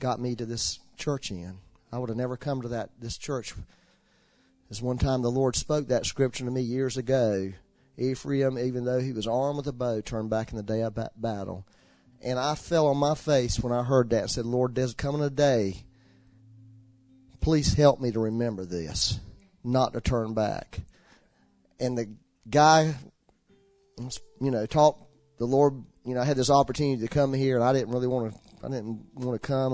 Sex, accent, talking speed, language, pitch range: male, American, 195 wpm, English, 110-135 Hz